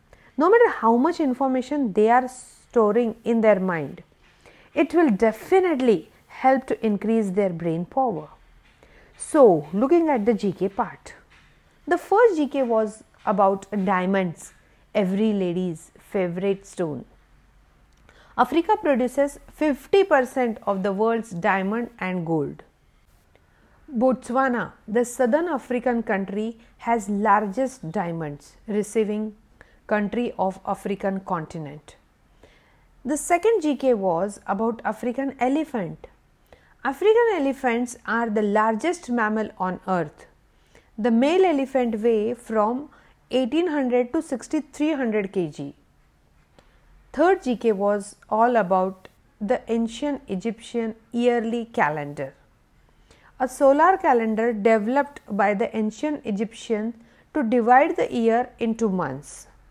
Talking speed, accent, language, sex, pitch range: 105 wpm, Indian, English, female, 200-265 Hz